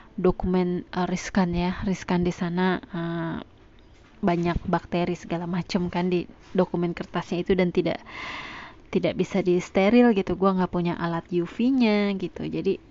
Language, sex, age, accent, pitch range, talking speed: Indonesian, female, 20-39, native, 170-195 Hz, 145 wpm